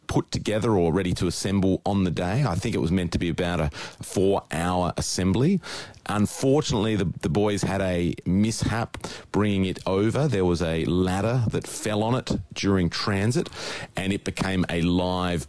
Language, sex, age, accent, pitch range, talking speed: English, male, 30-49, Australian, 85-105 Hz, 175 wpm